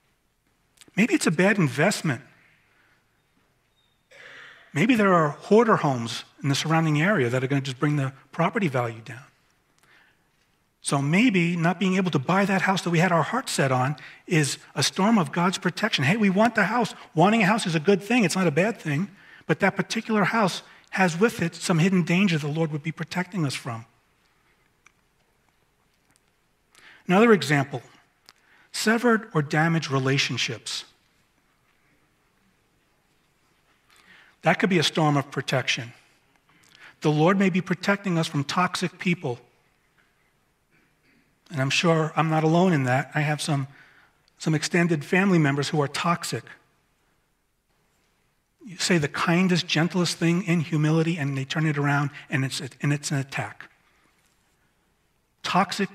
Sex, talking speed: male, 150 wpm